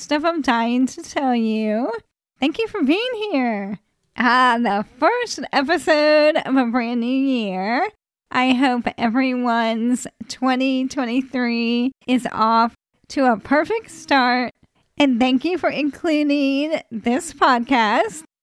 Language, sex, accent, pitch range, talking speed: English, female, American, 235-285 Hz, 120 wpm